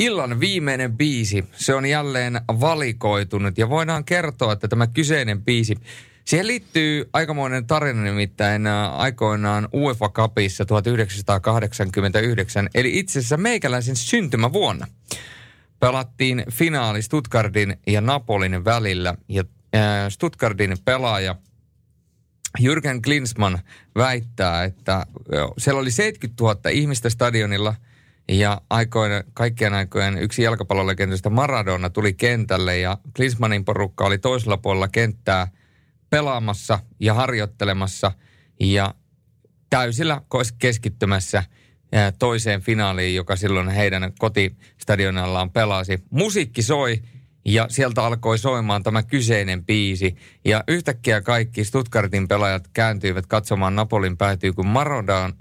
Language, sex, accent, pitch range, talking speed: Finnish, male, native, 100-130 Hz, 105 wpm